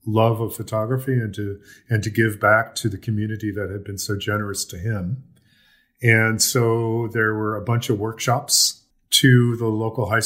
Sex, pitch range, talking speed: male, 105-130 Hz, 180 wpm